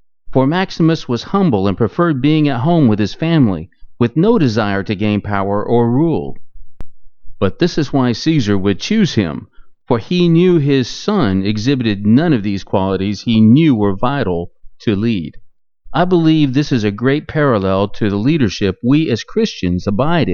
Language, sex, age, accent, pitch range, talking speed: English, male, 40-59, American, 100-140 Hz, 170 wpm